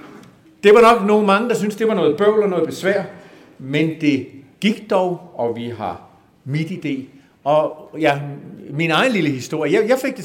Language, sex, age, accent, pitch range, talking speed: Danish, male, 60-79, native, 130-175 Hz, 195 wpm